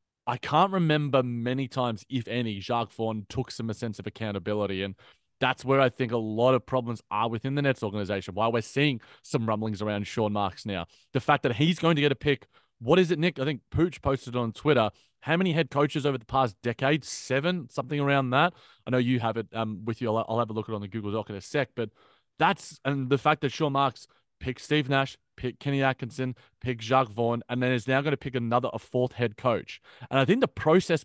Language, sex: English, male